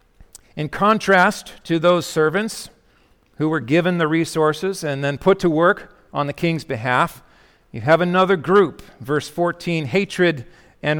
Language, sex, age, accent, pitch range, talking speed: English, male, 50-69, American, 145-185 Hz, 145 wpm